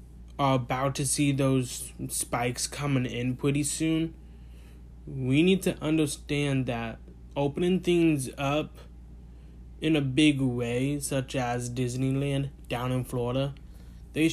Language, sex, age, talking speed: English, male, 20-39, 120 wpm